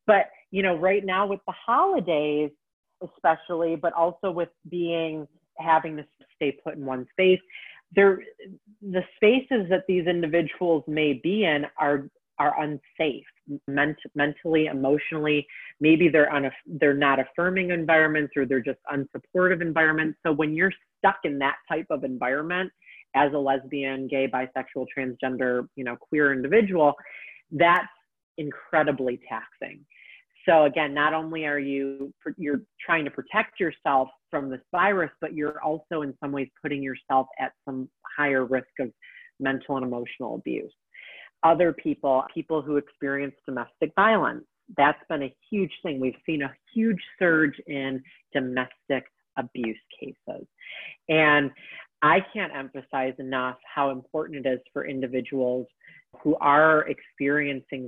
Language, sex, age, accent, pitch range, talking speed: English, female, 30-49, American, 135-170 Hz, 140 wpm